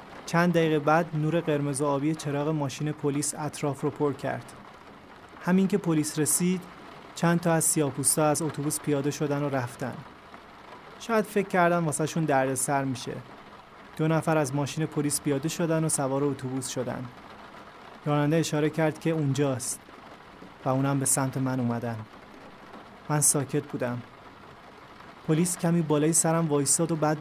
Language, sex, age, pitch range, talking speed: Persian, male, 30-49, 140-160 Hz, 150 wpm